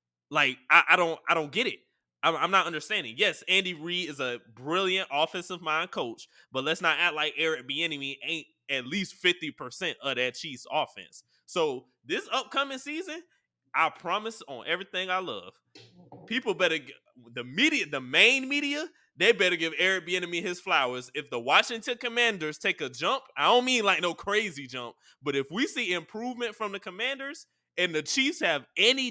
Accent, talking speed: American, 180 wpm